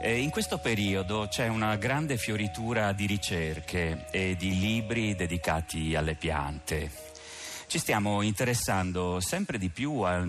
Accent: native